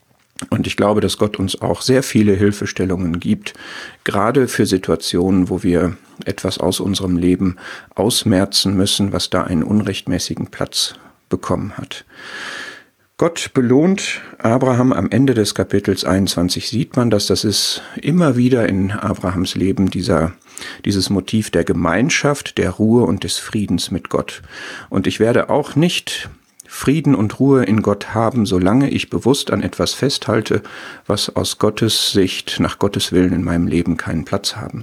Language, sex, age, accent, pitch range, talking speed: German, male, 50-69, German, 95-120 Hz, 155 wpm